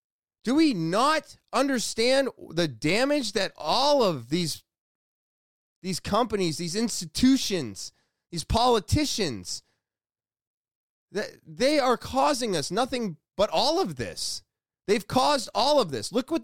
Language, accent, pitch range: English, American, 160-255 Hz